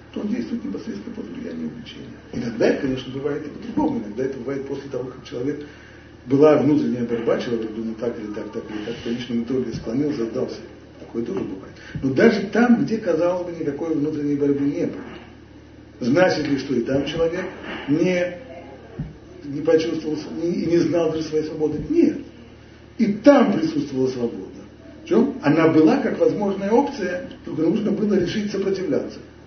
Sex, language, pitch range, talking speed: male, Russian, 125-175 Hz, 170 wpm